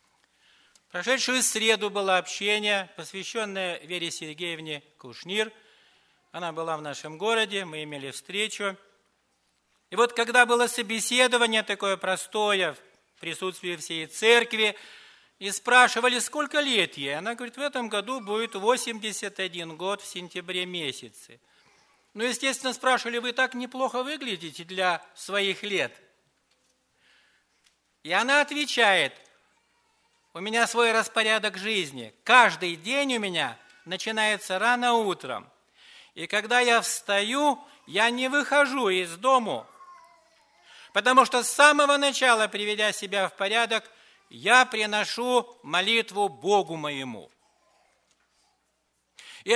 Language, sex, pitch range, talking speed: English, male, 185-250 Hz, 110 wpm